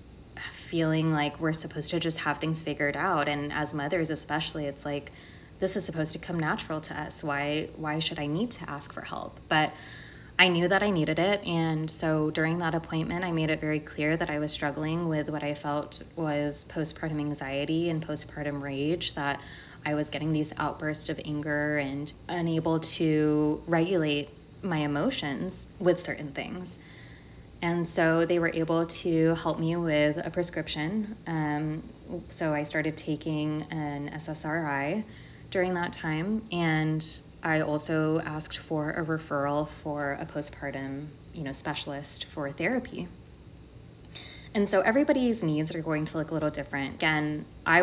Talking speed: 165 wpm